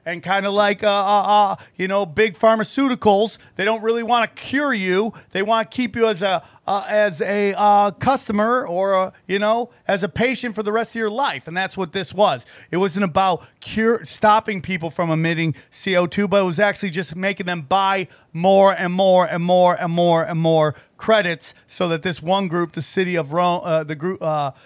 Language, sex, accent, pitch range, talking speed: English, male, American, 170-215 Hz, 210 wpm